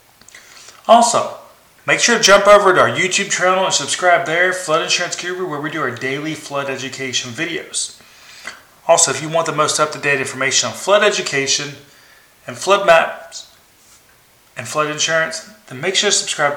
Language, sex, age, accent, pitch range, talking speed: English, male, 30-49, American, 140-200 Hz, 165 wpm